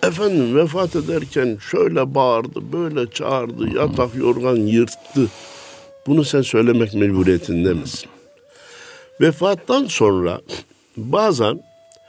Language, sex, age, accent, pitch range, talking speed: Turkish, male, 60-79, native, 95-160 Hz, 90 wpm